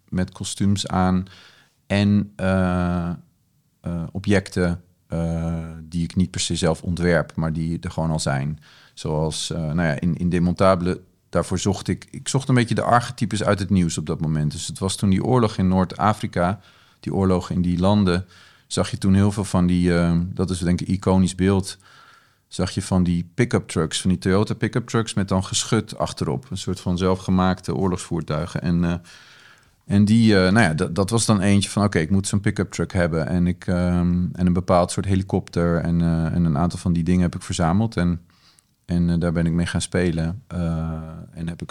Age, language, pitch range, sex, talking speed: 40-59, Dutch, 85-100 Hz, male, 205 wpm